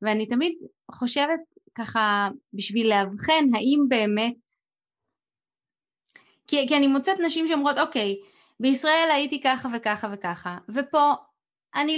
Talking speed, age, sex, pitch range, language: 110 wpm, 20-39, female, 205-275 Hz, Hebrew